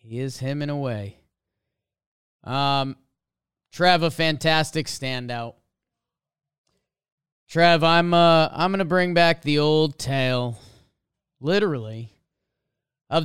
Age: 30-49